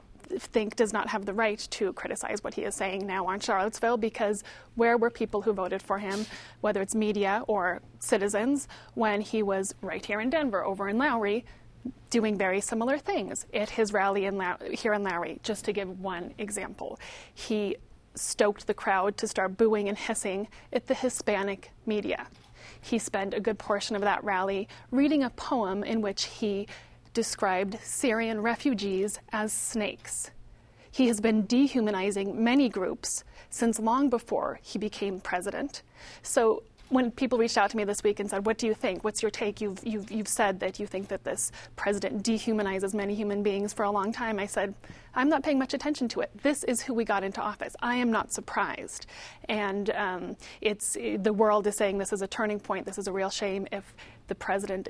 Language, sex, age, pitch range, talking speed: English, female, 30-49, 200-230 Hz, 190 wpm